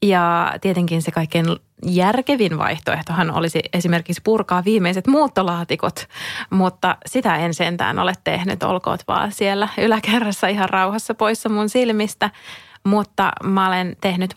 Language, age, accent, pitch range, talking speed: English, 20-39, Finnish, 175-205 Hz, 125 wpm